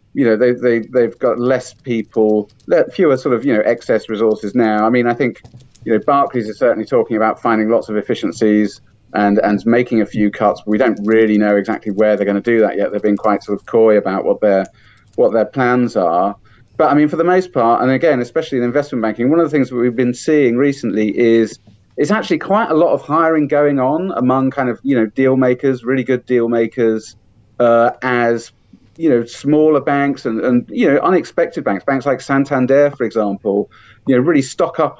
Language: English